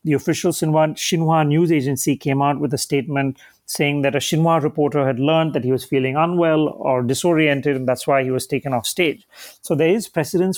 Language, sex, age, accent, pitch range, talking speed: English, male, 30-49, Indian, 140-160 Hz, 210 wpm